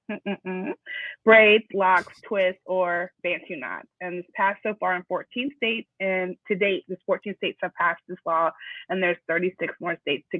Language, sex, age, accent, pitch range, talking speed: English, female, 20-39, American, 175-200 Hz, 180 wpm